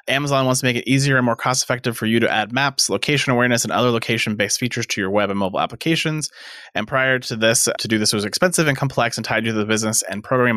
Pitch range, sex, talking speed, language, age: 105-135 Hz, male, 255 wpm, English, 30-49